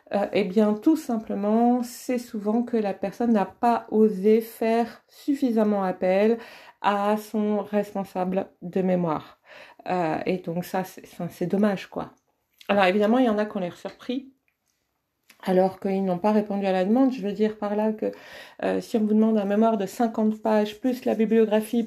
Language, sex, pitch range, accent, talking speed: French, female, 190-245 Hz, French, 185 wpm